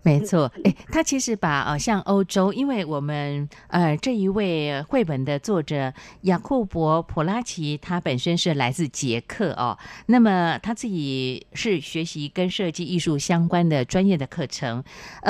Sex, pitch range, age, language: female, 145-195 Hz, 50-69, Chinese